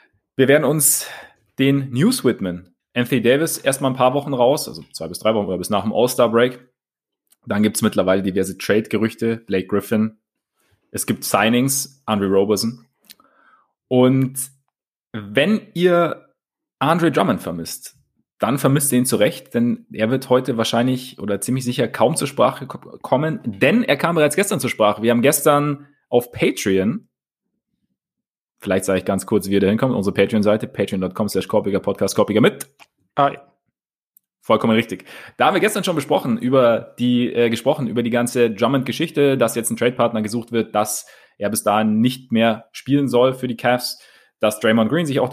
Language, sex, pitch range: German, male, 110-140 Hz